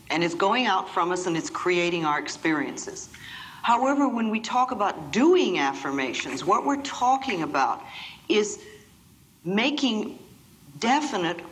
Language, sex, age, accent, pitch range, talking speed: English, female, 60-79, American, 170-260 Hz, 130 wpm